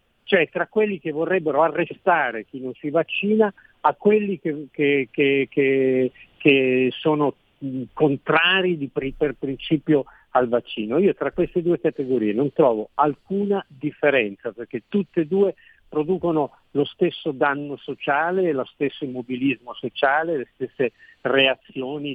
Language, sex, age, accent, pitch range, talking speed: Italian, male, 50-69, native, 130-175 Hz, 135 wpm